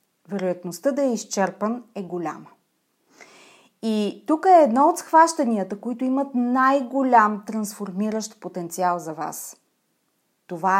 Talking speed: 110 wpm